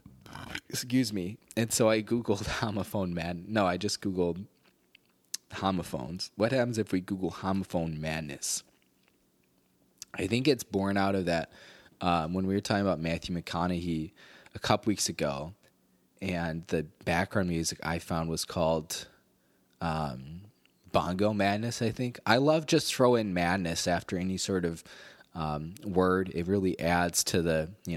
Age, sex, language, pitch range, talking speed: 20-39, male, English, 85-100 Hz, 150 wpm